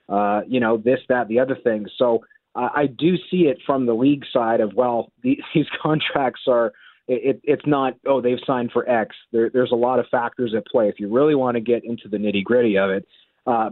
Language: English